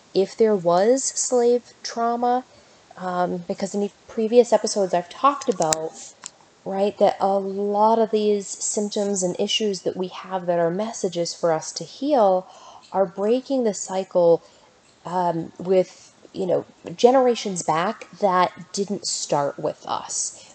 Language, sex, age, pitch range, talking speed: English, female, 30-49, 165-215 Hz, 140 wpm